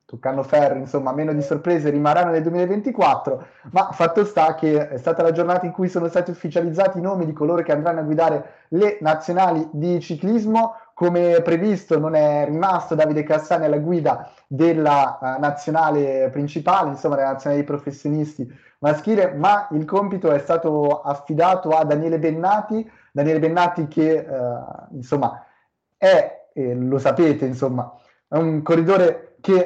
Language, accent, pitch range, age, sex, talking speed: Italian, native, 145-180 Hz, 30-49, male, 155 wpm